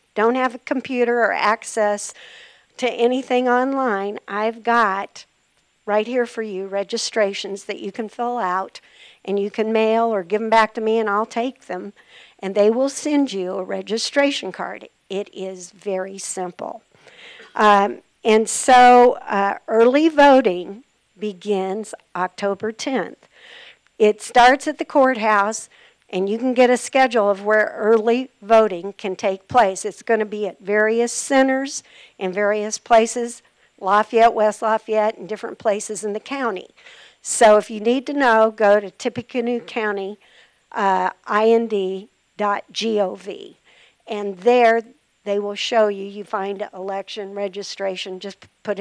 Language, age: English, 50-69